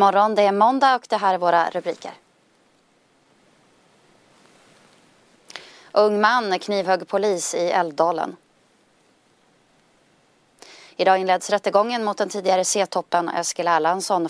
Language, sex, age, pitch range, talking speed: Swedish, female, 20-39, 170-205 Hz, 105 wpm